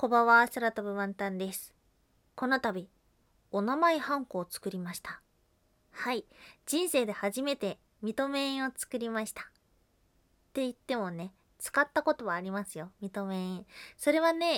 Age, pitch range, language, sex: 20-39, 190-265 Hz, Japanese, female